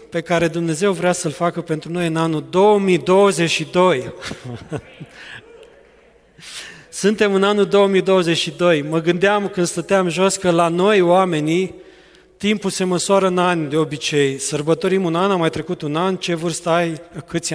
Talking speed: 145 wpm